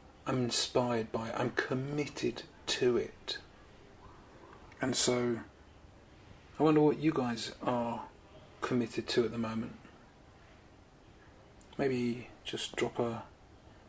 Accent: British